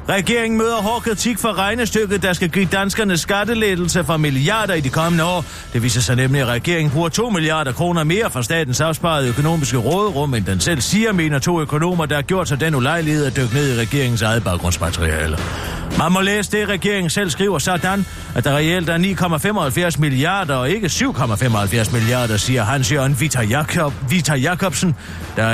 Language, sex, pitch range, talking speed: Danish, male, 120-185 Hz, 180 wpm